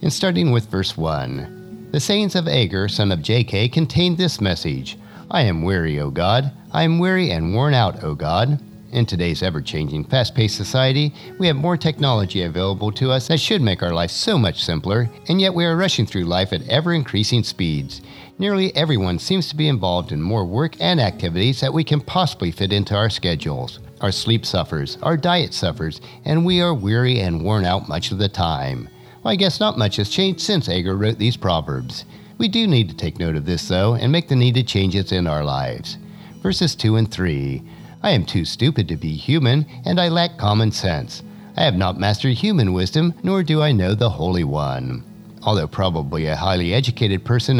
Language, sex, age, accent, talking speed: English, male, 50-69, American, 200 wpm